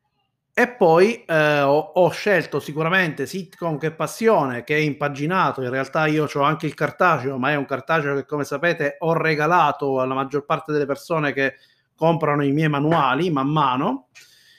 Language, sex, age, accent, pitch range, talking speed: Italian, male, 30-49, native, 140-180 Hz, 170 wpm